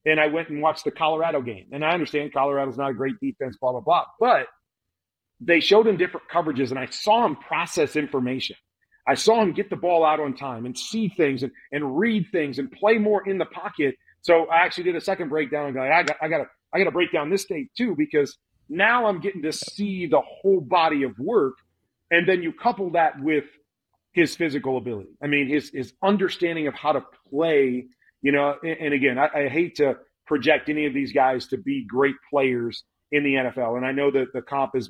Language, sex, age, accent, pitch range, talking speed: English, male, 40-59, American, 135-175 Hz, 225 wpm